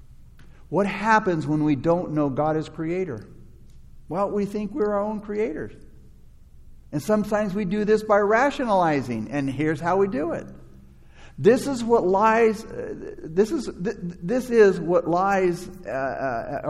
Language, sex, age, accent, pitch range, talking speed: English, male, 60-79, American, 150-210 Hz, 140 wpm